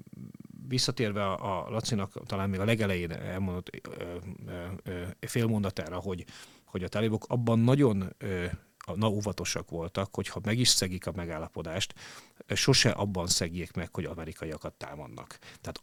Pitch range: 90-110 Hz